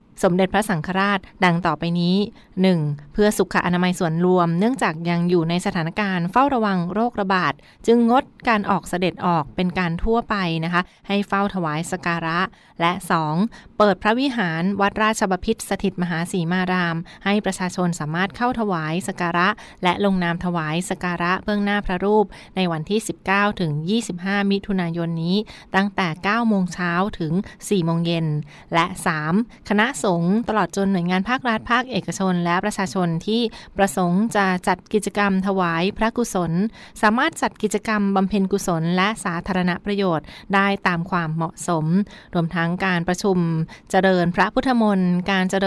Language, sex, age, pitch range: Thai, female, 20-39, 175-205 Hz